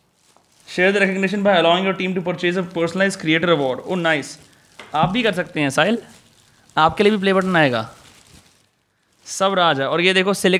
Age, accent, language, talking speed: 20-39, native, Hindi, 170 wpm